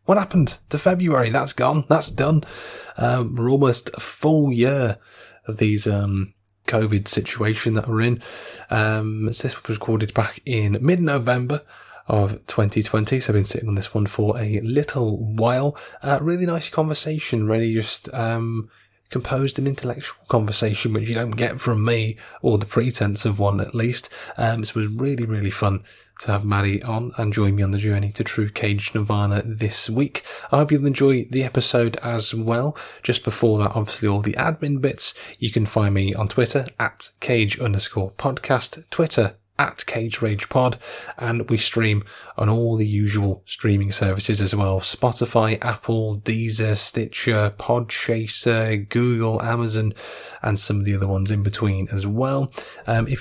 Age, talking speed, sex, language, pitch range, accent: 20-39, 170 wpm, male, English, 105-125 Hz, British